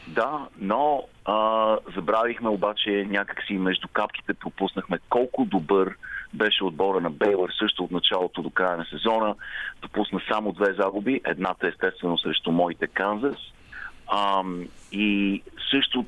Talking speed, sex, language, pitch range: 130 wpm, male, Bulgarian, 95-115 Hz